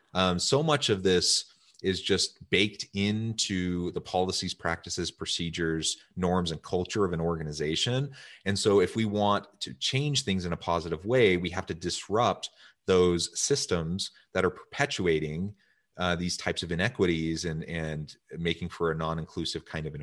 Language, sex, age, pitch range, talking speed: English, male, 30-49, 80-100 Hz, 160 wpm